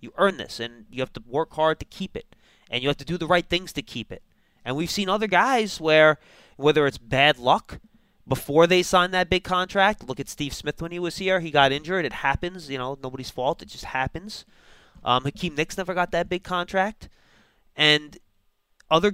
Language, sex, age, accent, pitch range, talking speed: English, male, 20-39, American, 120-175 Hz, 215 wpm